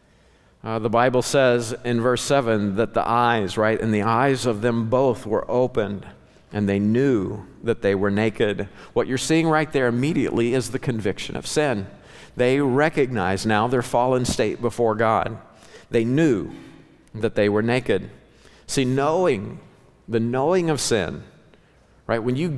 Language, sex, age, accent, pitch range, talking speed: English, male, 50-69, American, 105-130 Hz, 160 wpm